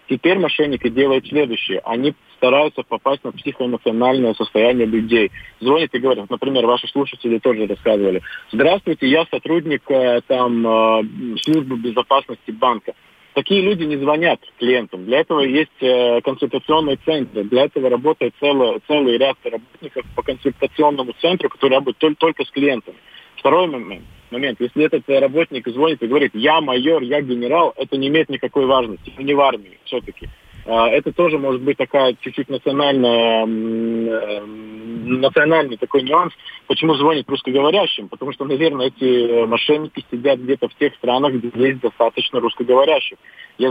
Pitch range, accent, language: 120-150 Hz, native, Russian